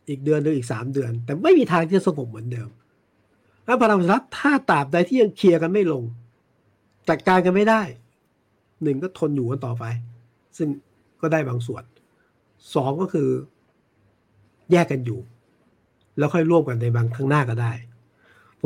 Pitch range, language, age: 115-155 Hz, Thai, 60-79